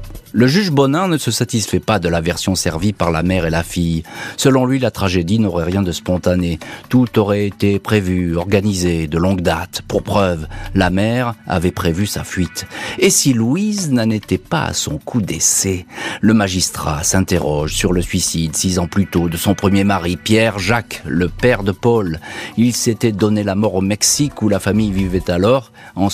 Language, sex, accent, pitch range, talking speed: French, male, French, 90-115 Hz, 195 wpm